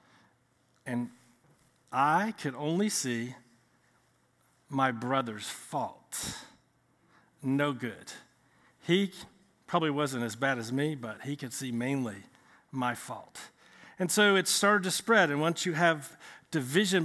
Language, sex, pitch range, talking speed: English, male, 135-175 Hz, 125 wpm